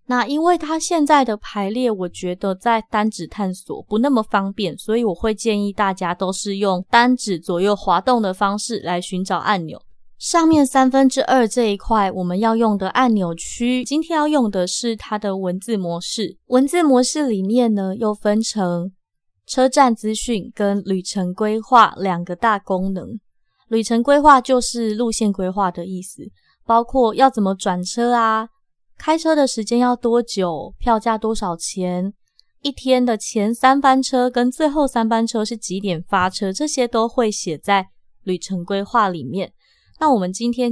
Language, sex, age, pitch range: Chinese, female, 20-39, 190-245 Hz